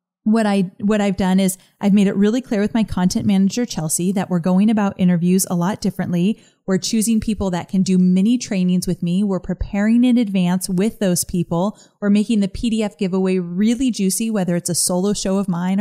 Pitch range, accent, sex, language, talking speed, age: 175-220 Hz, American, female, English, 210 wpm, 30-49